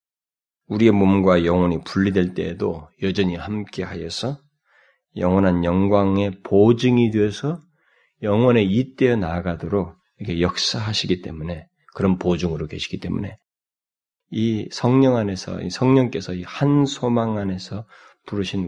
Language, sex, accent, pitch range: Korean, male, native, 95-145 Hz